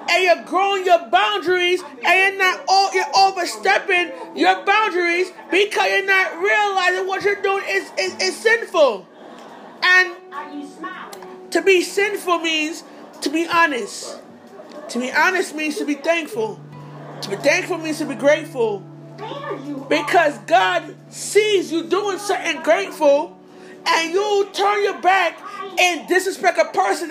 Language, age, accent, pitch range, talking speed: English, 30-49, American, 335-395 Hz, 135 wpm